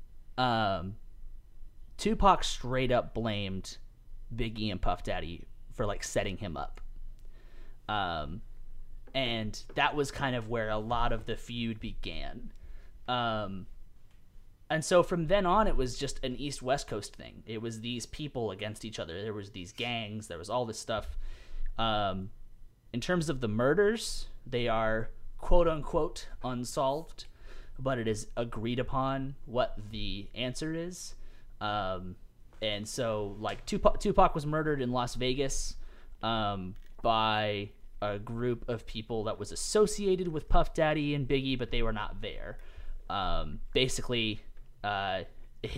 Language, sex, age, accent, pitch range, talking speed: English, male, 30-49, American, 105-130 Hz, 145 wpm